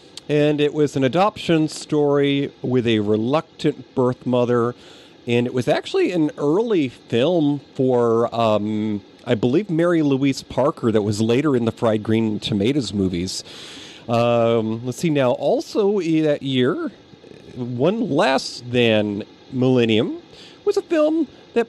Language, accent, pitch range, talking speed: English, American, 120-180 Hz, 140 wpm